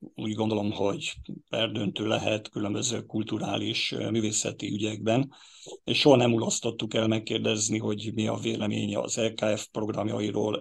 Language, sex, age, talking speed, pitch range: Hungarian, male, 50-69, 125 wpm, 110-120 Hz